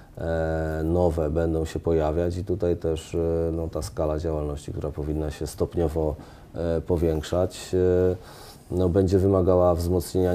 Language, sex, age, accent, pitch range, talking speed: Polish, male, 30-49, native, 80-95 Hz, 105 wpm